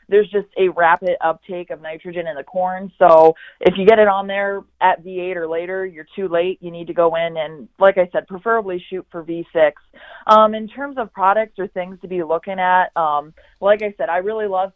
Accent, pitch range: American, 165-195 Hz